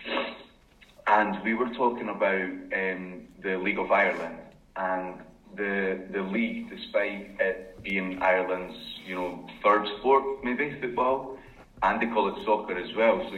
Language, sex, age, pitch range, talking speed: English, male, 30-49, 95-120 Hz, 145 wpm